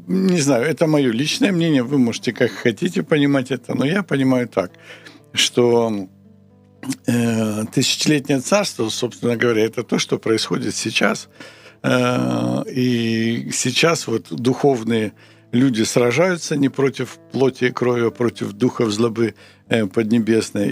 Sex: male